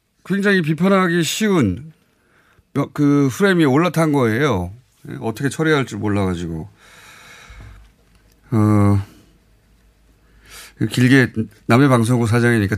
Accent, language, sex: native, Korean, male